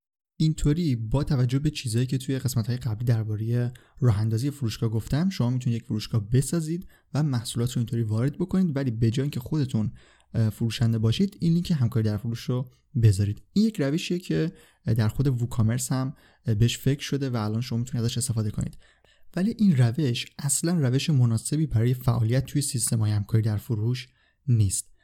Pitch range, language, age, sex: 115-145 Hz, Persian, 20-39, male